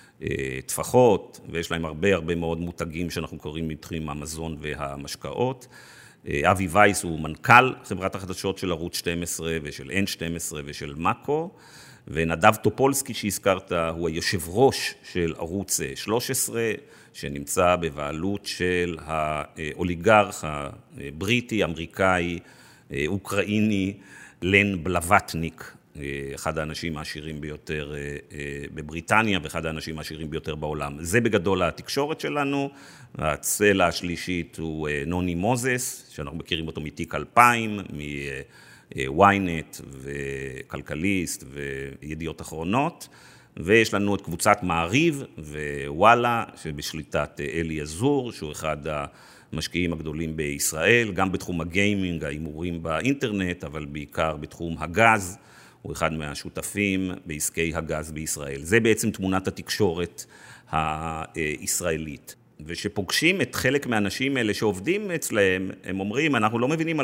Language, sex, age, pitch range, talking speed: Hebrew, male, 50-69, 80-100 Hz, 105 wpm